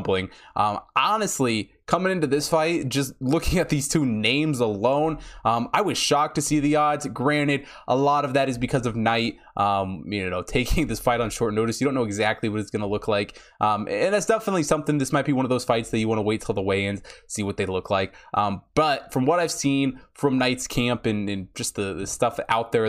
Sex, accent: male, American